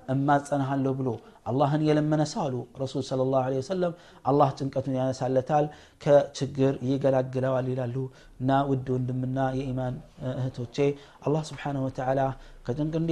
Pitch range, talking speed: 125-140 Hz, 130 wpm